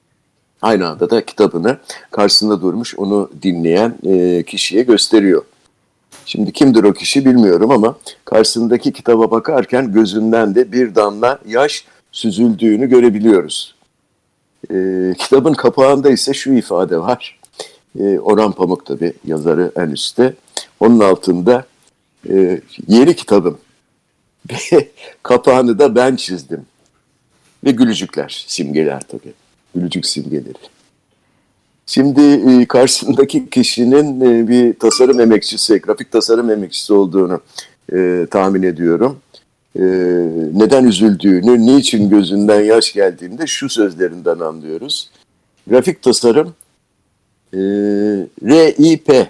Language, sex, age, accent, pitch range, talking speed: Turkish, male, 60-79, native, 95-125 Hz, 95 wpm